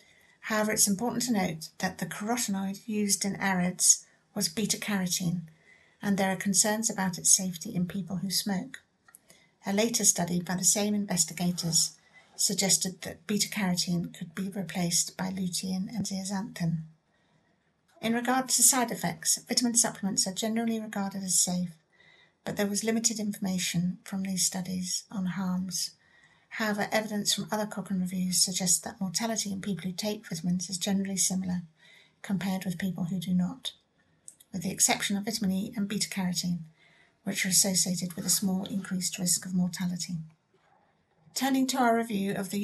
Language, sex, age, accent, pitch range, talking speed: English, female, 60-79, British, 180-205 Hz, 155 wpm